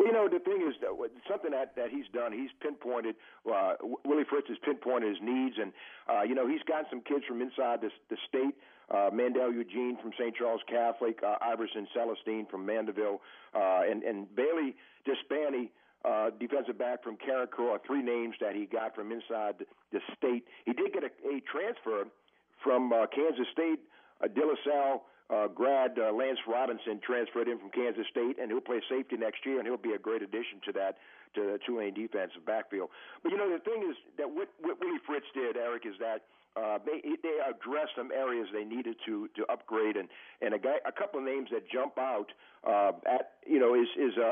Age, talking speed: 50-69, 200 wpm